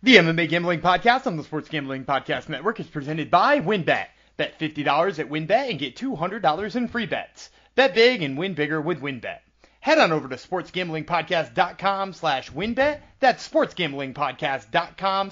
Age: 30-49